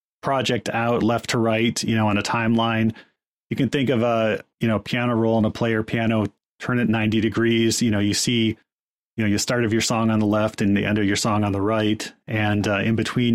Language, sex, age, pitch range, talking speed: English, male, 30-49, 105-120 Hz, 245 wpm